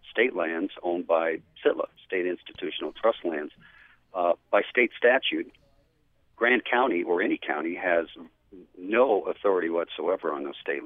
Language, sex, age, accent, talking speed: English, male, 50-69, American, 140 wpm